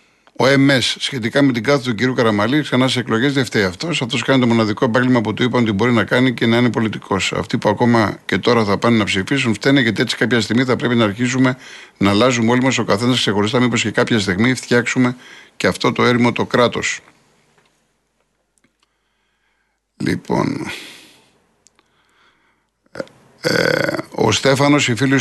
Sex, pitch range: male, 115-145 Hz